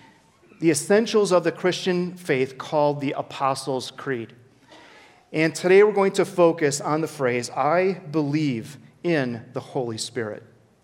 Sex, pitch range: male, 130-175 Hz